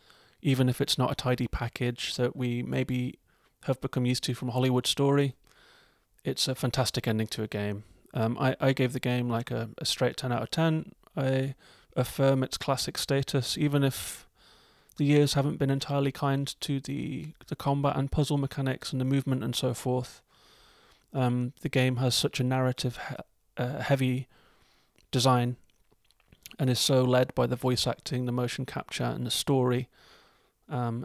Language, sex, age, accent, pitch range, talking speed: English, male, 30-49, British, 120-135 Hz, 170 wpm